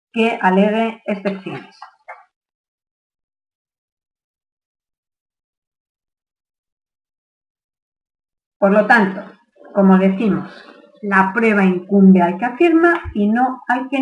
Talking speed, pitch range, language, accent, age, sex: 75 wpm, 190-270 Hz, Spanish, Spanish, 50-69, female